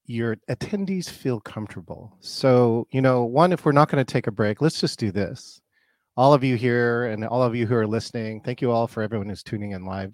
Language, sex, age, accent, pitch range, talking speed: English, male, 40-59, American, 100-140 Hz, 235 wpm